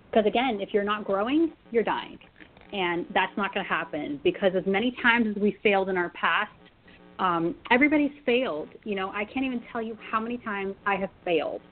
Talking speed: 205 wpm